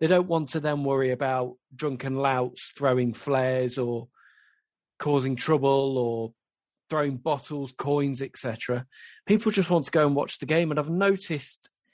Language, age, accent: English, 20-39, British